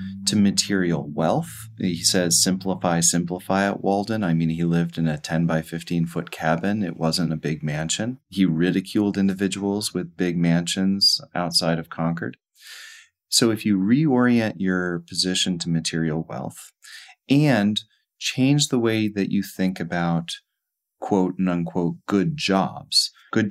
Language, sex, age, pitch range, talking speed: English, male, 30-49, 85-105 Hz, 145 wpm